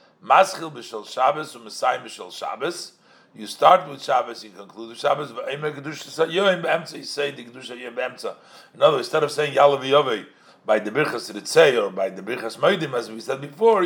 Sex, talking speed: male, 180 wpm